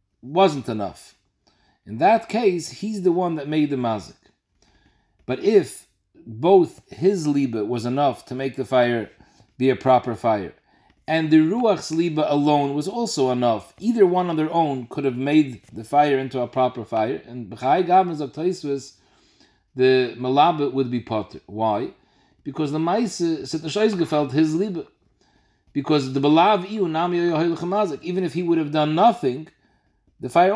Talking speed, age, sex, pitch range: 155 wpm, 40-59, male, 130-170 Hz